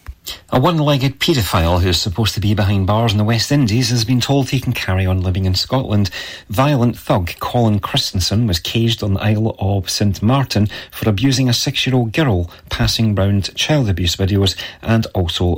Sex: male